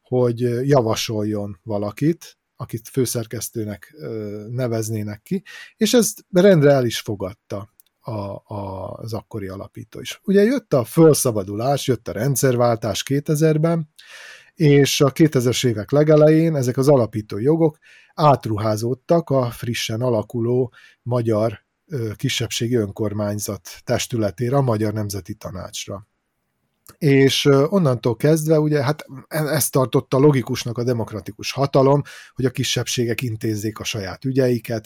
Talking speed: 110 wpm